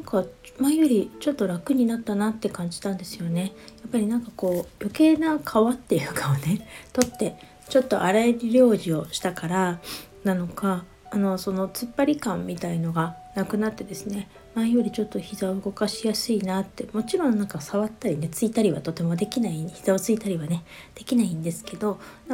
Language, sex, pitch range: Japanese, female, 180-220 Hz